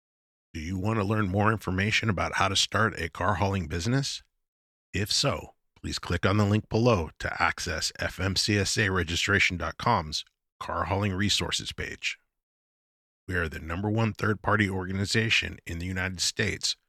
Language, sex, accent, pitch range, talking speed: English, male, American, 80-105 Hz, 145 wpm